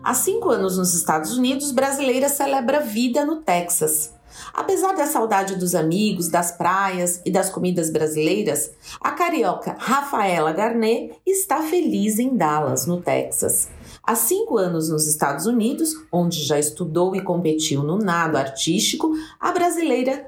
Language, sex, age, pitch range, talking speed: English, female, 40-59, 180-270 Hz, 140 wpm